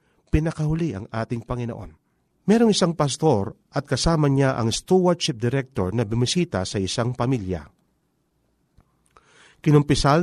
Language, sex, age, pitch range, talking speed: Filipino, male, 40-59, 110-160 Hz, 110 wpm